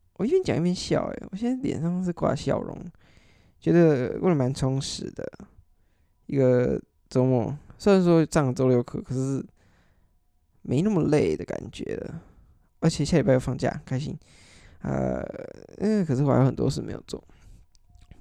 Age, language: 20-39, Chinese